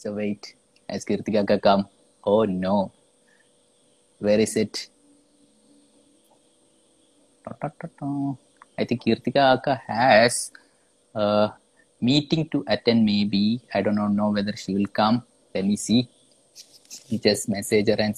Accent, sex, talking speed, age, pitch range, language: Indian, male, 110 wpm, 20-39, 110-145 Hz, English